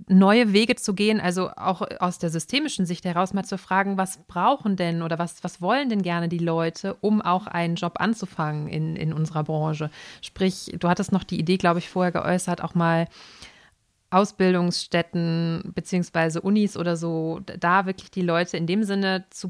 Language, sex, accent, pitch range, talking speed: German, female, German, 170-200 Hz, 180 wpm